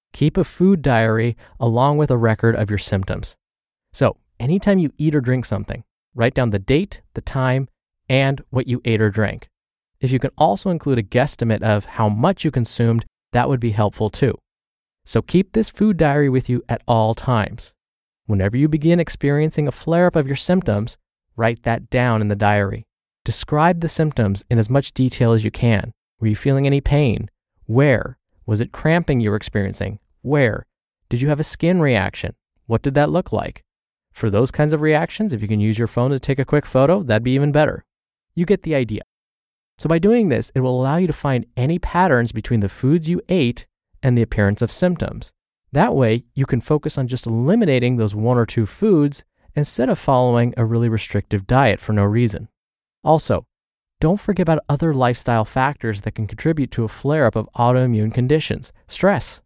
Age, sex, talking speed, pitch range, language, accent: 20-39, male, 195 wpm, 110-150 Hz, English, American